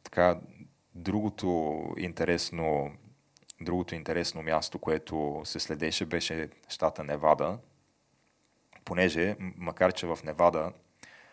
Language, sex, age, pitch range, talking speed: Bulgarian, male, 20-39, 80-90 Hz, 90 wpm